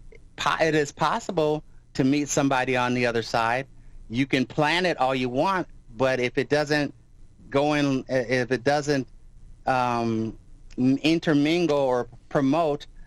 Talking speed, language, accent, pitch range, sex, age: 140 wpm, English, American, 115-150 Hz, male, 30-49